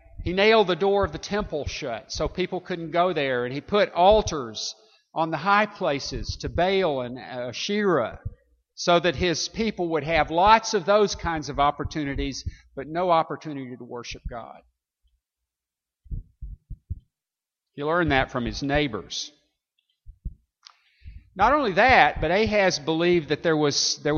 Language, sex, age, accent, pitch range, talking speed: English, male, 50-69, American, 120-180 Hz, 140 wpm